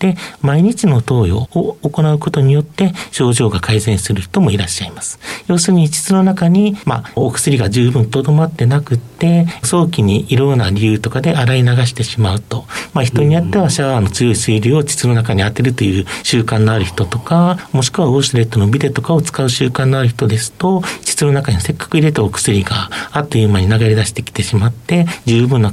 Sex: male